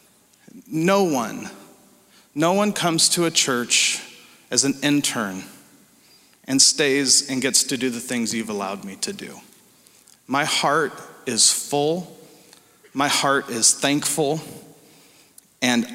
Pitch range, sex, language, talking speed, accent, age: 130-160 Hz, male, English, 125 wpm, American, 40-59